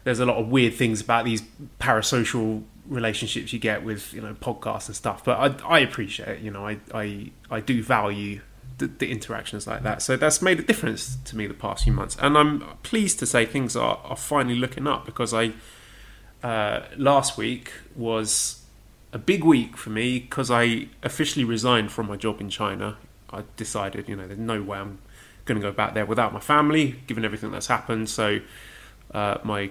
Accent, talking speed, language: British, 200 wpm, English